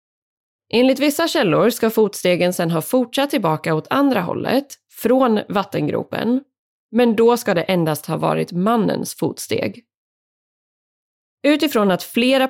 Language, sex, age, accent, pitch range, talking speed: Swedish, female, 20-39, native, 165-245 Hz, 125 wpm